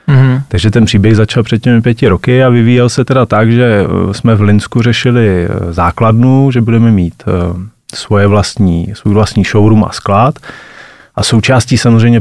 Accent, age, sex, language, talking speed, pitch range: native, 30-49, male, Czech, 155 wpm, 100-115 Hz